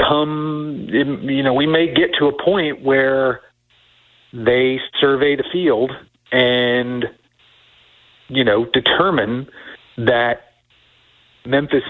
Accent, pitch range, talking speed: American, 120-145 Hz, 100 wpm